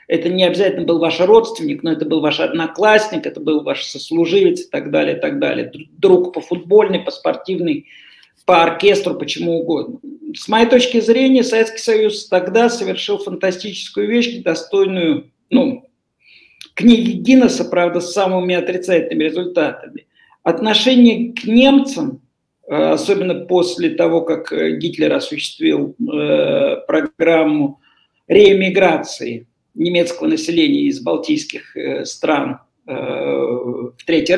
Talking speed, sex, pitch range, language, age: 120 wpm, male, 170-245 Hz, Russian, 50-69